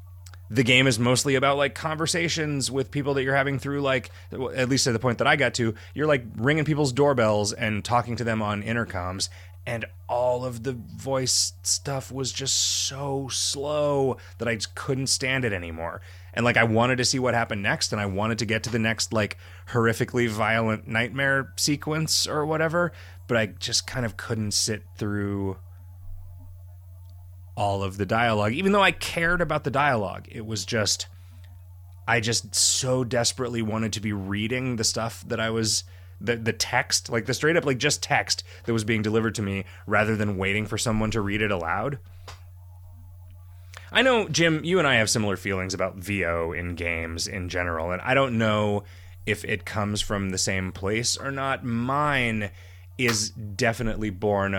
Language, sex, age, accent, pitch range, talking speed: English, male, 30-49, American, 90-125 Hz, 185 wpm